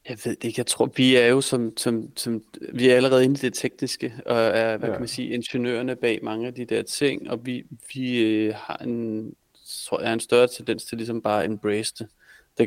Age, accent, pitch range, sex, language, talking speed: 30-49, native, 105-120 Hz, male, Danish, 235 wpm